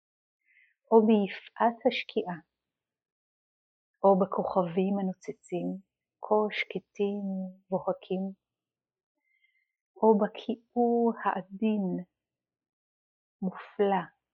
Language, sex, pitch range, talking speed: Hebrew, female, 180-220 Hz, 55 wpm